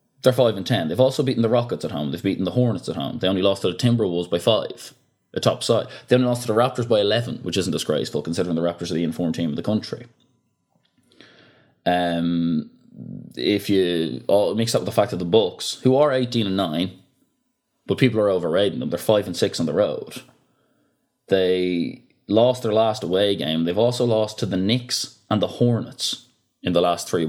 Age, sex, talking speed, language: 20-39, male, 200 wpm, English